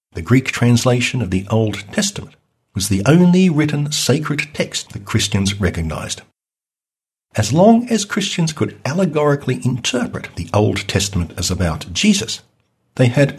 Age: 60-79